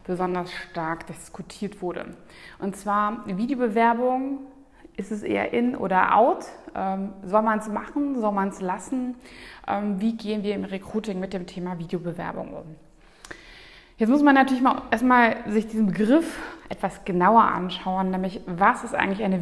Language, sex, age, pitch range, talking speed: German, female, 20-39, 185-235 Hz, 150 wpm